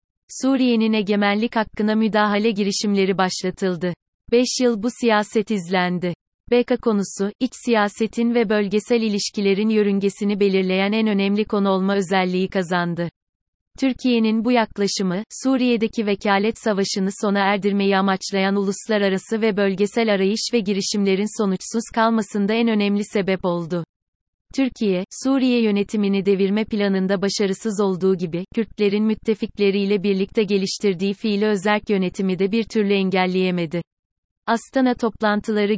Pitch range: 195-220 Hz